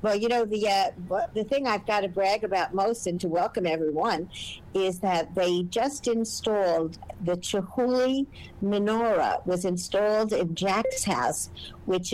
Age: 50-69